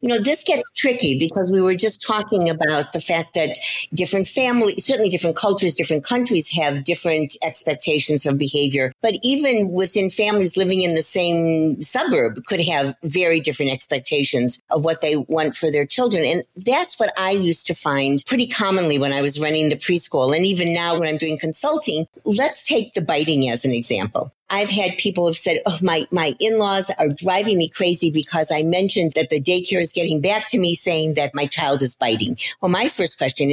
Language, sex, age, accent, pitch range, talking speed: English, female, 50-69, American, 155-215 Hz, 195 wpm